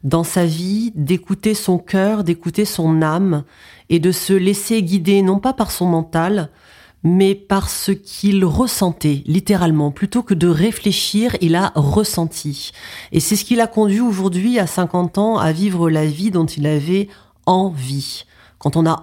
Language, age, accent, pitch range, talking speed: French, 40-59, French, 160-205 Hz, 165 wpm